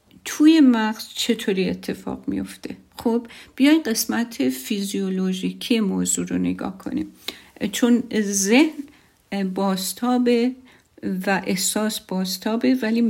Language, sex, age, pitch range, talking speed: Persian, female, 50-69, 195-260 Hz, 90 wpm